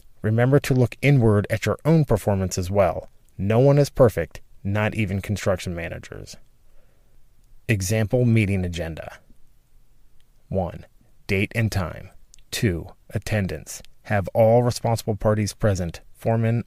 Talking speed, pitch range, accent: 120 wpm, 100-120 Hz, American